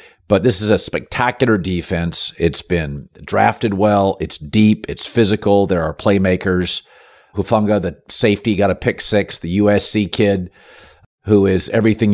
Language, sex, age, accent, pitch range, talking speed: English, male, 50-69, American, 95-120 Hz, 150 wpm